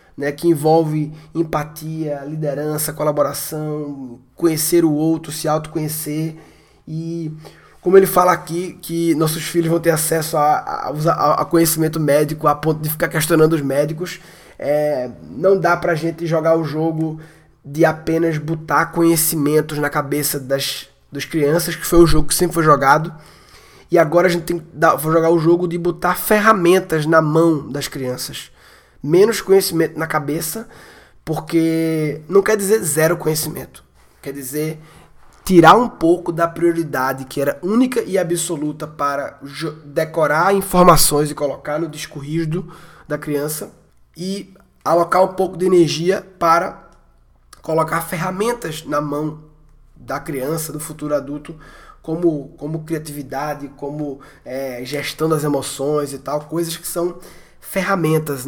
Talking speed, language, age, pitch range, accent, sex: 140 wpm, Portuguese, 20-39, 150-170 Hz, Brazilian, male